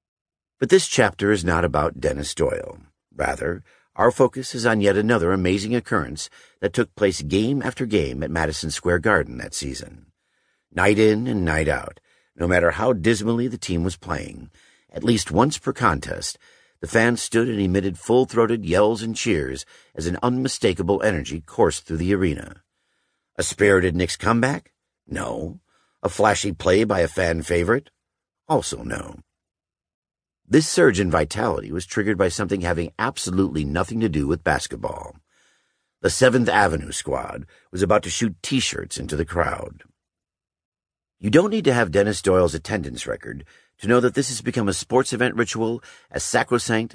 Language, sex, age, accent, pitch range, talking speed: English, male, 50-69, American, 85-115 Hz, 160 wpm